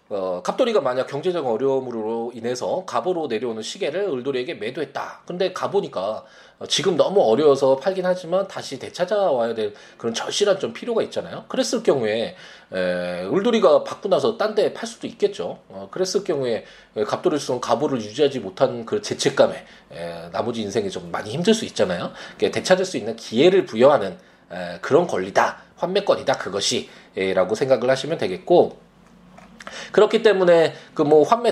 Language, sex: Korean, male